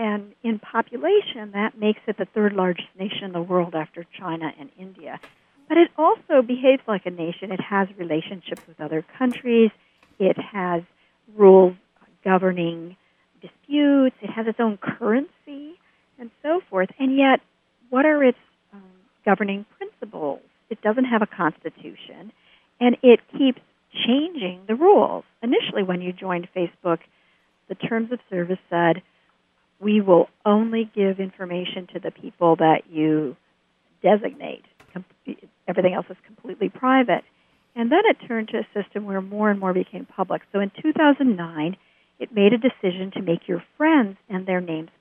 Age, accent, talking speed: 50-69, American, 150 wpm